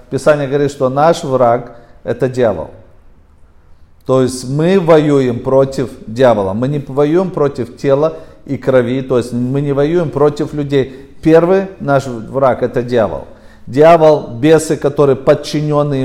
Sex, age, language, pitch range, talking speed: male, 40-59, Russian, 135-155 Hz, 135 wpm